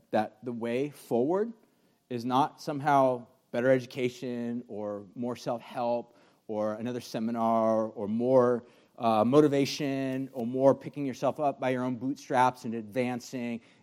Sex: male